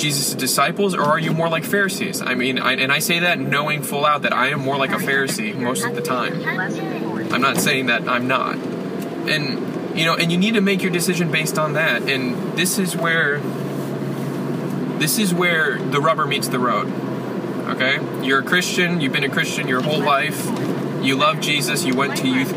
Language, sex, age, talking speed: English, male, 20-39, 205 wpm